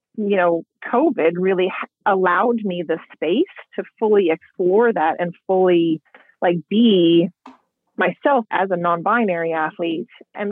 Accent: American